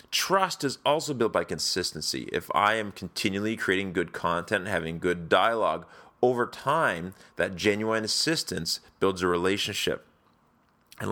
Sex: male